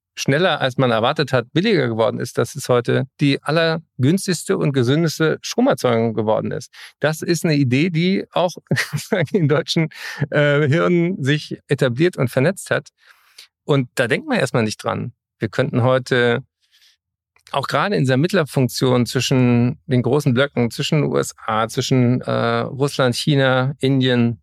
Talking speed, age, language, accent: 145 wpm, 40-59, German, German